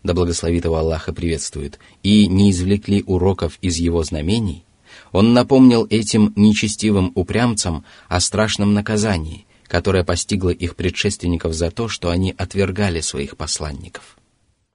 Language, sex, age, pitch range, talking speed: Russian, male, 30-49, 90-105 Hz, 120 wpm